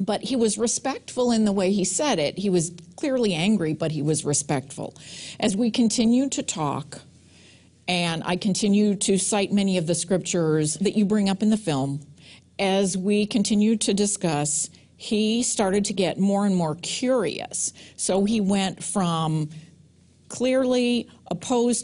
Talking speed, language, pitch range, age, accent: 160 wpm, English, 160-210 Hz, 50-69, American